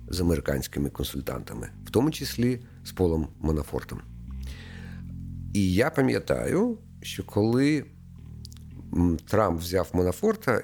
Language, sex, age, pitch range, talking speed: Ukrainian, male, 50-69, 85-125 Hz, 95 wpm